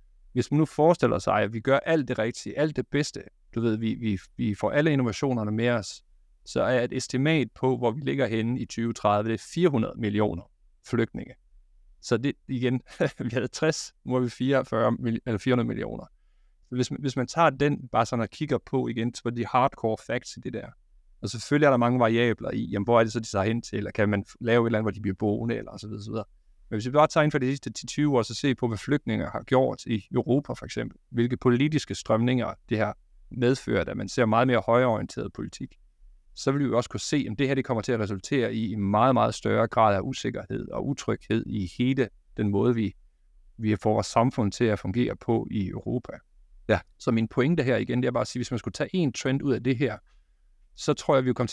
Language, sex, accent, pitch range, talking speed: Danish, male, native, 110-130 Hz, 240 wpm